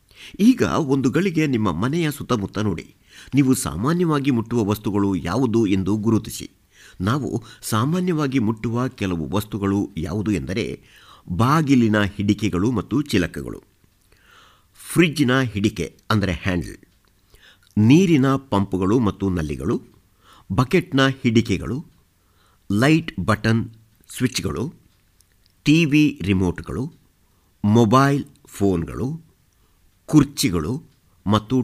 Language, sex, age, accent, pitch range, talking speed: Kannada, male, 50-69, native, 95-130 Hz, 80 wpm